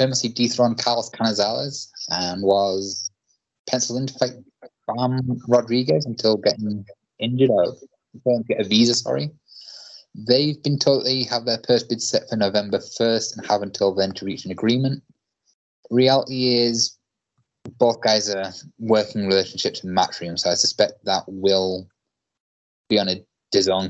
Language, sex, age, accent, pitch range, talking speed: English, male, 20-39, British, 95-120 Hz, 145 wpm